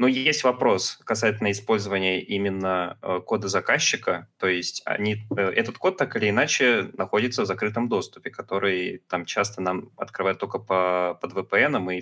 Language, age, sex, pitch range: Russian, 20-39, male, 95-105 Hz